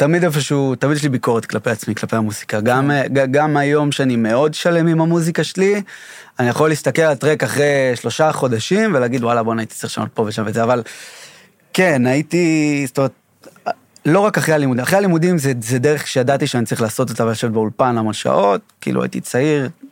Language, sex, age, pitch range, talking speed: Hebrew, male, 30-49, 125-160 Hz, 195 wpm